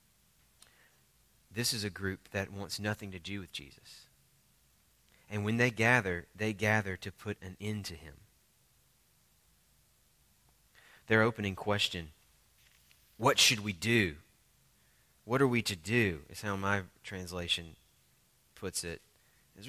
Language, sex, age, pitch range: English, male, 30-49, 95-135 Hz